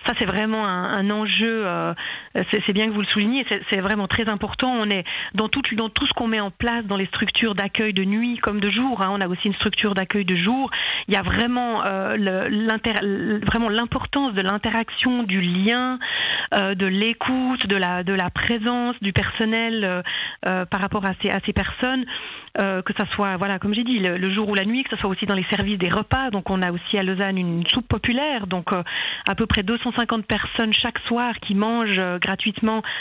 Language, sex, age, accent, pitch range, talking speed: French, female, 40-59, French, 190-230 Hz, 230 wpm